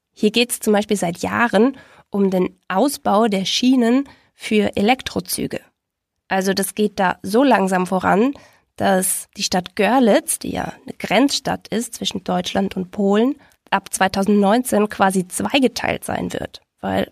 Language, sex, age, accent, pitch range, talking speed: German, female, 20-39, German, 195-245 Hz, 145 wpm